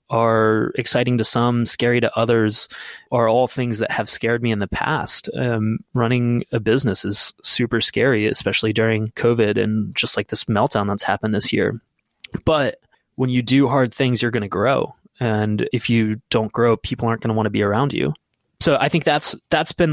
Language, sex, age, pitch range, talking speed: English, male, 20-39, 110-125 Hz, 200 wpm